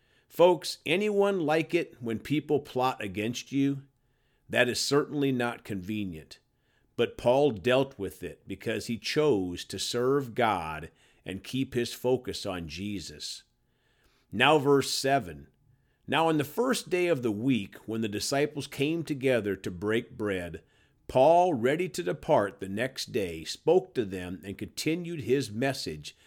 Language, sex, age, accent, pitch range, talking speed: English, male, 50-69, American, 100-145 Hz, 145 wpm